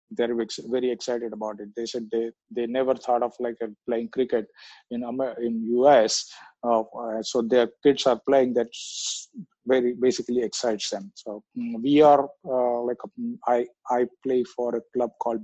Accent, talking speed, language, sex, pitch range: Indian, 165 wpm, English, male, 120-135 Hz